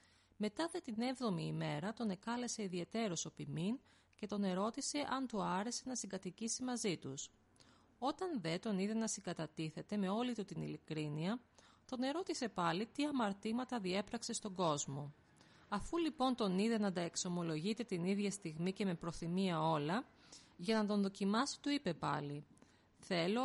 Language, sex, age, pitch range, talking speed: Greek, female, 30-49, 165-235 Hz, 155 wpm